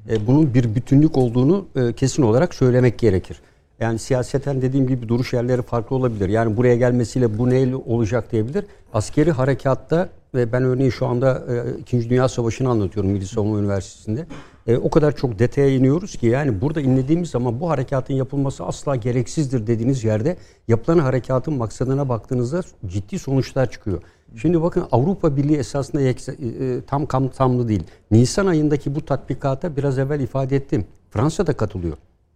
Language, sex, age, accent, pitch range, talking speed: Turkish, male, 60-79, native, 115-150 Hz, 145 wpm